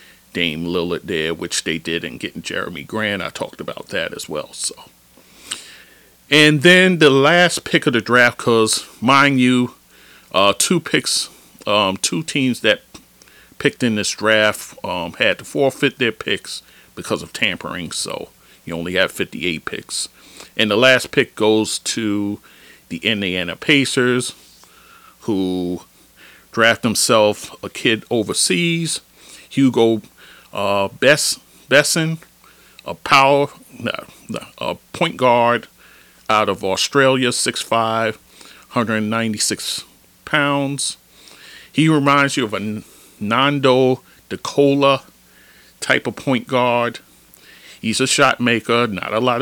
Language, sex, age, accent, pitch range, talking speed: English, male, 40-59, American, 100-140 Hz, 125 wpm